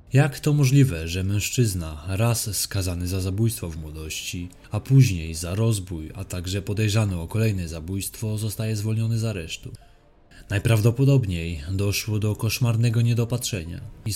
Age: 20-39